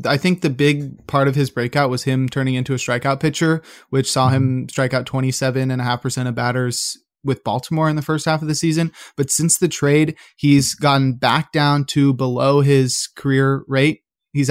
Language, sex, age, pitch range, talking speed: English, male, 20-39, 130-145 Hz, 190 wpm